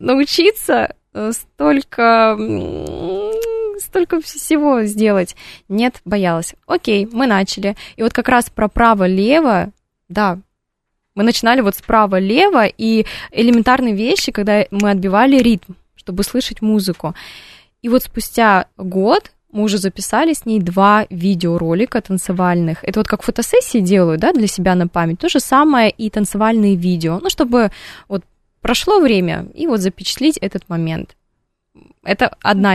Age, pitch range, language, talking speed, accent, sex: 20-39, 190-240 Hz, Russian, 130 wpm, native, female